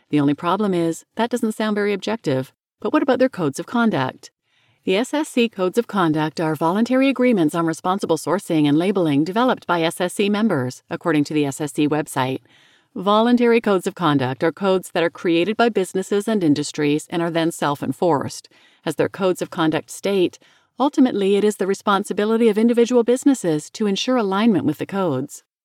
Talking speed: 175 wpm